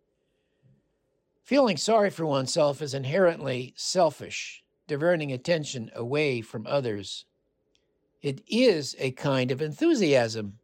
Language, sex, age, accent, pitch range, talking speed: English, male, 50-69, American, 125-160 Hz, 100 wpm